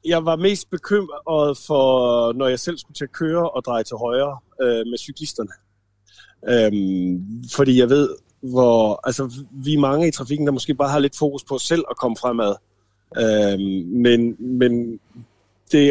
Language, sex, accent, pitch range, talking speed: Danish, male, native, 110-140 Hz, 175 wpm